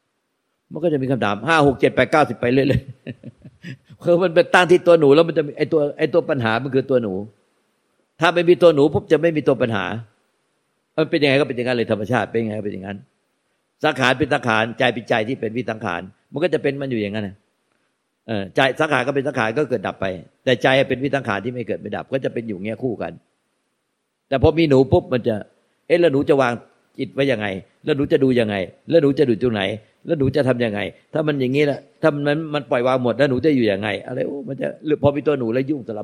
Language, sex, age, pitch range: Thai, male, 60-79, 115-150 Hz